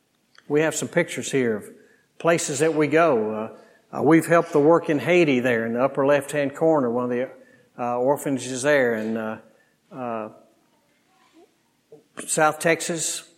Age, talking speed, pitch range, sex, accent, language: 60-79, 150 wpm, 140-165 Hz, male, American, English